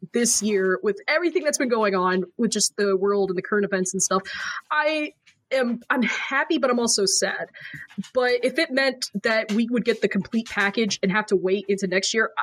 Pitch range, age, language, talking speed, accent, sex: 195-240 Hz, 20-39, English, 215 wpm, American, female